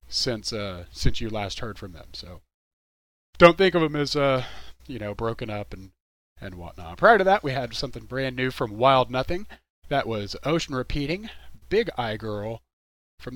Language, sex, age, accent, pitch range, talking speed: English, male, 40-59, American, 90-145 Hz, 185 wpm